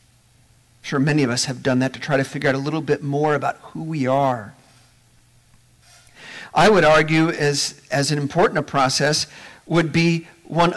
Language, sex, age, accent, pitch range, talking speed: English, male, 40-59, American, 120-170 Hz, 180 wpm